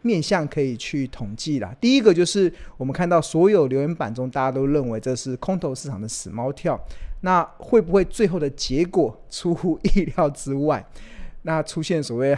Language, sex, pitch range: Chinese, male, 135-185 Hz